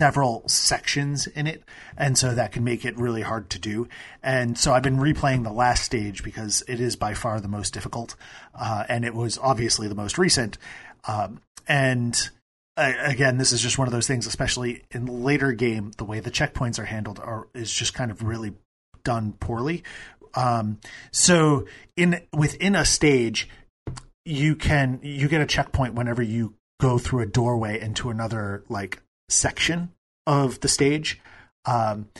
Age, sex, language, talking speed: 30-49, male, English, 175 wpm